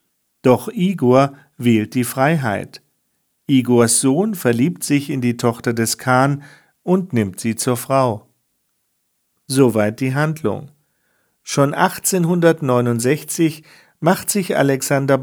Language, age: German, 40-59